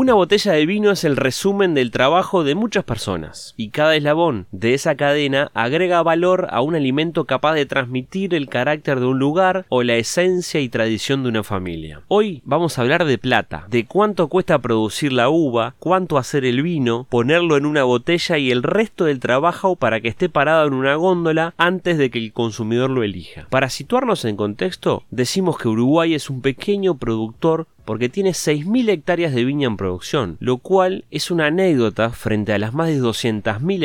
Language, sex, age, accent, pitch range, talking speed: Spanish, male, 30-49, Argentinian, 115-165 Hz, 190 wpm